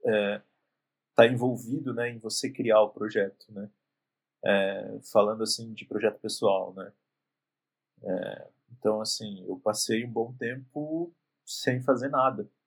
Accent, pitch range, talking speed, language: Brazilian, 105-130 Hz, 135 wpm, Portuguese